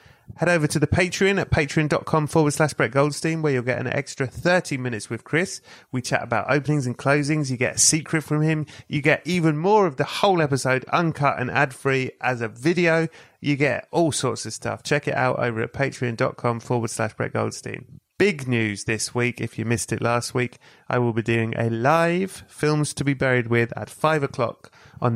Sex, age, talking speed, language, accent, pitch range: male, 30-49, 205 wpm, English, British, 115-145 Hz